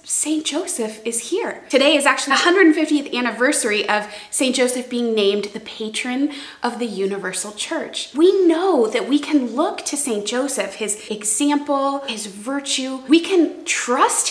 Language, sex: English, female